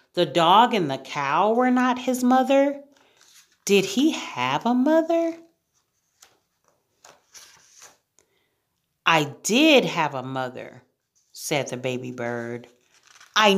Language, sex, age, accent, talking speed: English, female, 40-59, American, 105 wpm